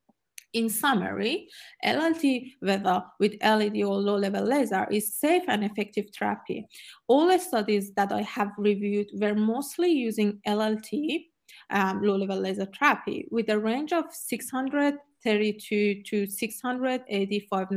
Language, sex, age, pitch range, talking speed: English, female, 30-49, 200-260 Hz, 120 wpm